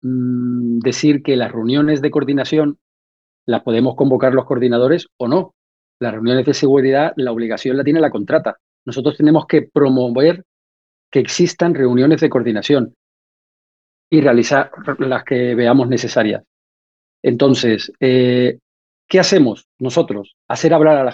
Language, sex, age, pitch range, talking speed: Spanish, male, 40-59, 120-150 Hz, 135 wpm